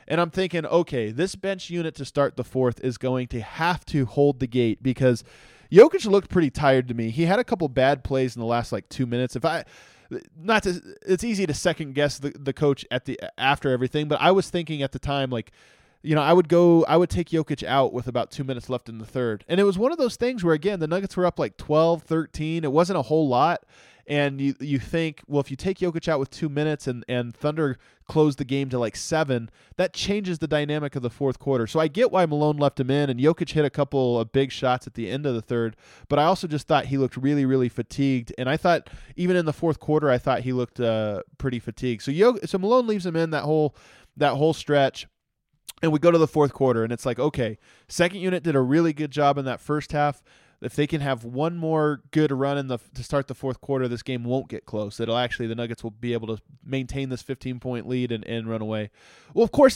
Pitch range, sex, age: 130-170 Hz, male, 20-39